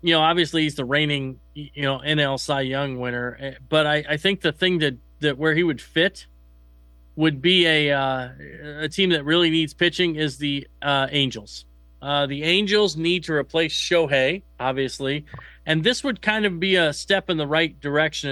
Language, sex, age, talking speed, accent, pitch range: English, male, 40-59, 185 wpm, American, 130-175 Hz